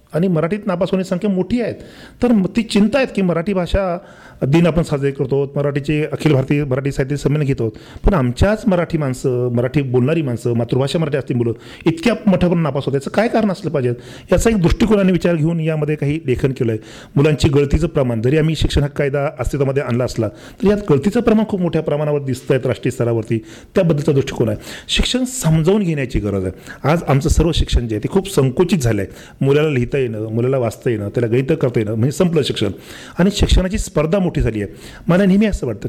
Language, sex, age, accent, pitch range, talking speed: Hindi, male, 40-59, native, 125-170 Hz, 165 wpm